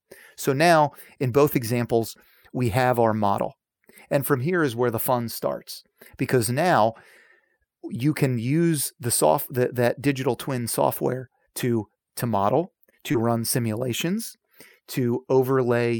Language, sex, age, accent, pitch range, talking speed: English, male, 30-49, American, 120-140 Hz, 135 wpm